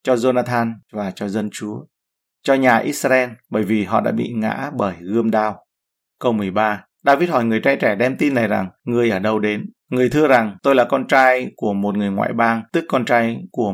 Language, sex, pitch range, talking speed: Vietnamese, male, 105-130 Hz, 215 wpm